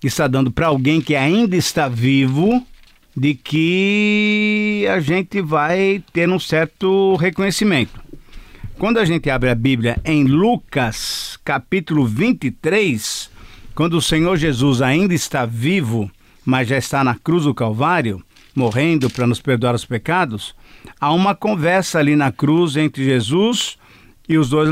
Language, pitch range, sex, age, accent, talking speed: Portuguese, 135-175 Hz, male, 50-69, Brazilian, 140 wpm